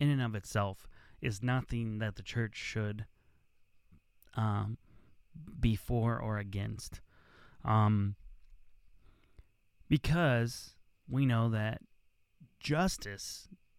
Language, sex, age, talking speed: English, male, 30-49, 90 wpm